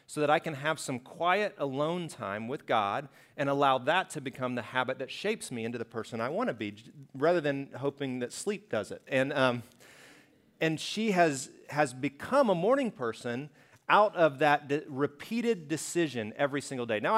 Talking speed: 190 wpm